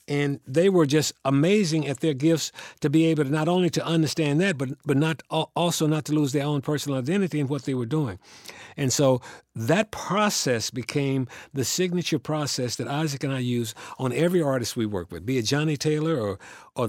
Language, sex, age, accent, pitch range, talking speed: English, male, 60-79, American, 125-160 Hz, 205 wpm